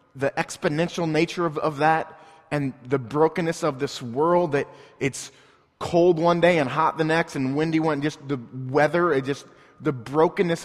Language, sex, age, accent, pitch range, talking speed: English, male, 20-39, American, 140-175 Hz, 175 wpm